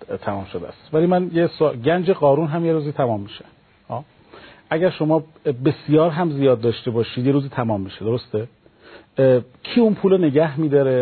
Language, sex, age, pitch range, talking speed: Persian, male, 40-59, 120-155 Hz, 180 wpm